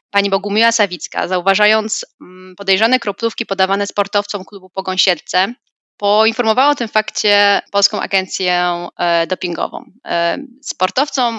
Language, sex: Polish, female